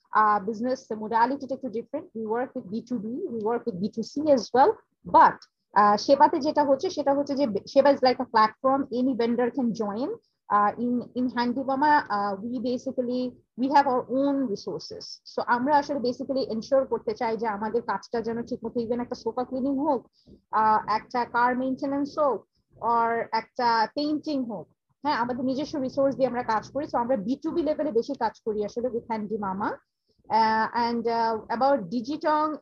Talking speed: 175 wpm